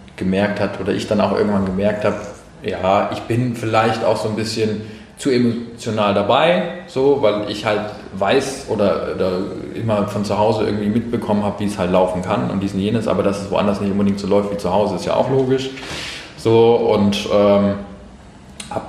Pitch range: 100-115 Hz